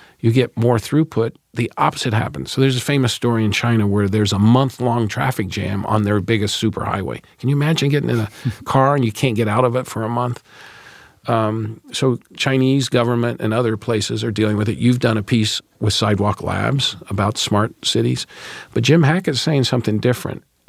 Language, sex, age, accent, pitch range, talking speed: English, male, 50-69, American, 110-135 Hz, 195 wpm